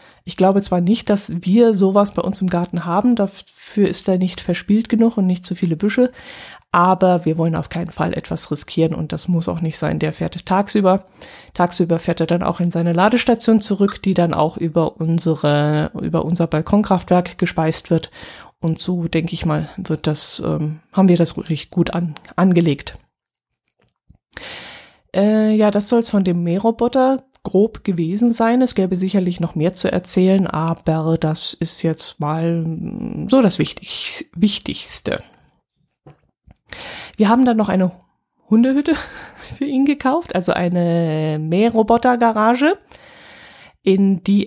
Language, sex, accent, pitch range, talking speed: German, female, German, 165-200 Hz, 155 wpm